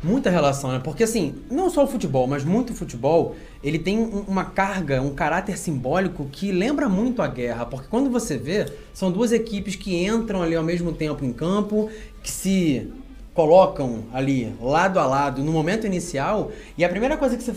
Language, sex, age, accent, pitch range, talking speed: Portuguese, male, 20-39, Brazilian, 155-215 Hz, 190 wpm